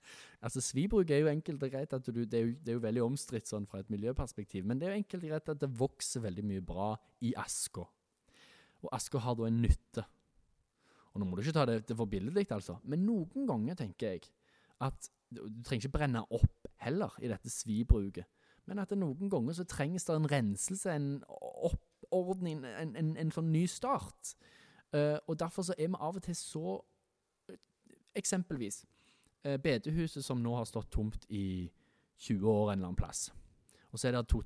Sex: male